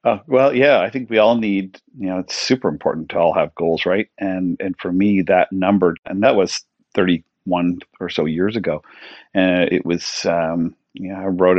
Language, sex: English, male